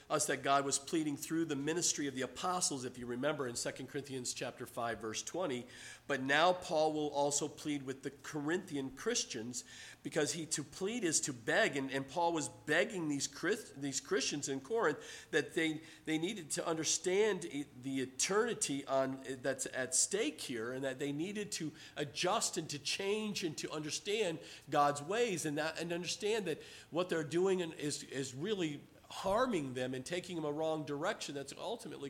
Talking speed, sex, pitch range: 180 wpm, male, 140-190 Hz